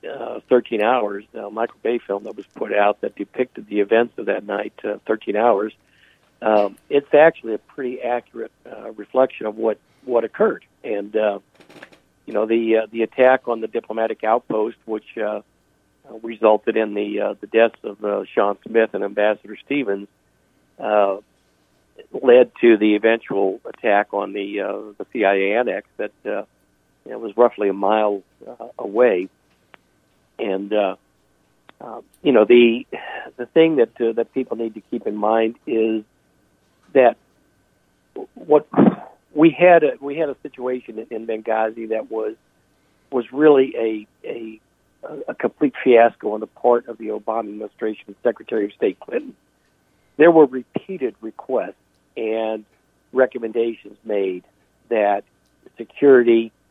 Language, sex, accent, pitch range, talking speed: English, male, American, 105-120 Hz, 150 wpm